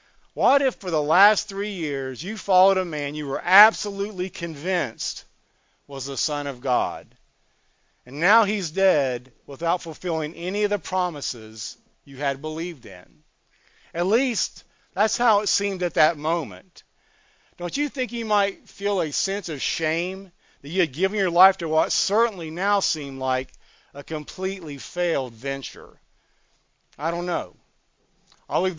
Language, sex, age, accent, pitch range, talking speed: English, male, 50-69, American, 140-185 Hz, 155 wpm